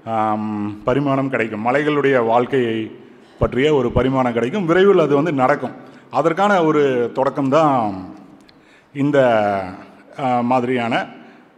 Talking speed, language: 90 wpm, Tamil